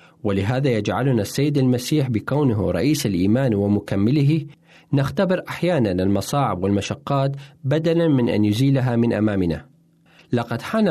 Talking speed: 110 wpm